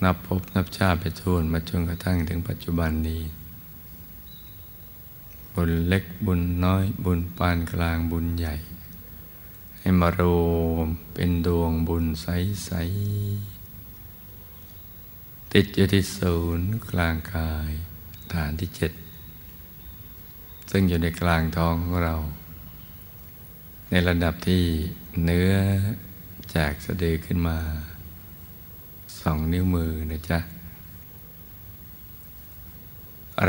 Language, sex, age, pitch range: Thai, male, 60-79, 85-95 Hz